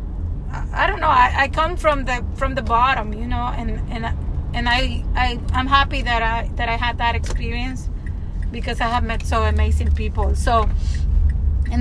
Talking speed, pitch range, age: 185 wpm, 75-100 Hz, 30-49